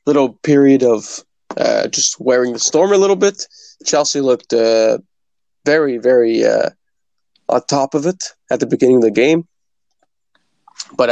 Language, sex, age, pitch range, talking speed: English, male, 20-39, 120-150 Hz, 150 wpm